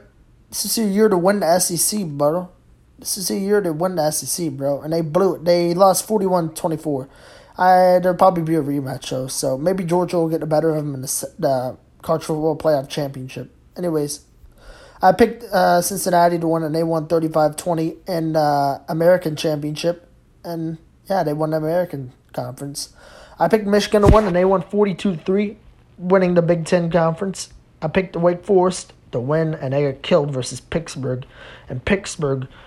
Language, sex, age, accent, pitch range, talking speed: English, male, 20-39, American, 145-185 Hz, 180 wpm